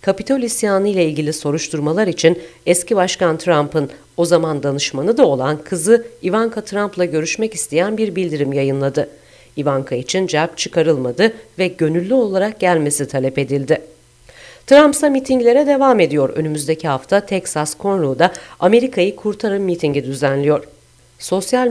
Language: Turkish